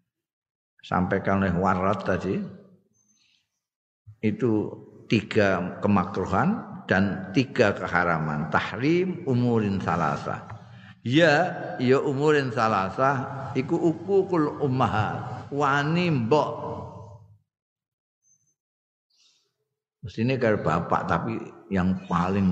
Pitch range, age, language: 95-125 Hz, 50-69, Indonesian